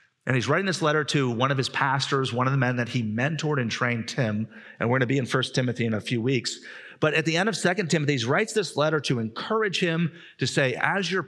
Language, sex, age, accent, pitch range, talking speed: English, male, 40-59, American, 120-155 Hz, 265 wpm